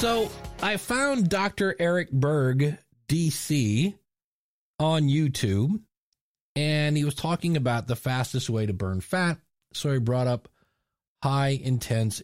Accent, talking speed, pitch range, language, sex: American, 125 wpm, 120-160 Hz, English, male